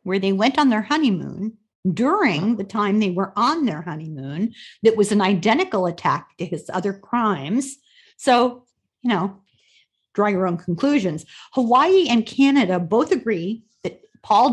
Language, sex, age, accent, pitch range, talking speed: English, female, 40-59, American, 180-230 Hz, 155 wpm